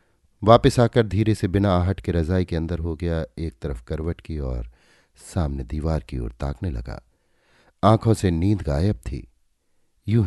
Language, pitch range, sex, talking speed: Hindi, 75-105 Hz, male, 170 wpm